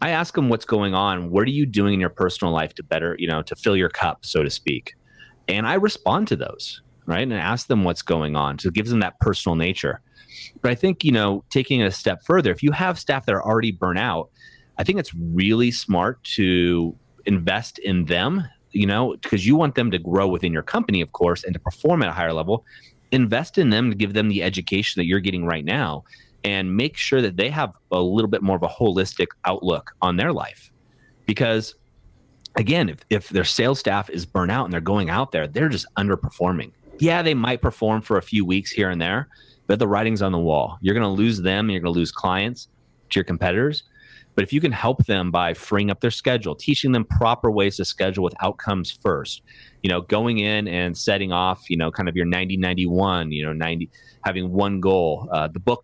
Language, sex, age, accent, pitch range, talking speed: English, male, 30-49, American, 90-115 Hz, 230 wpm